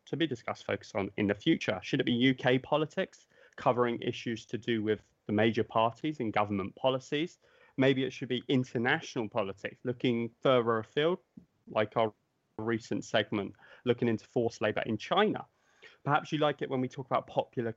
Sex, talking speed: male, 175 wpm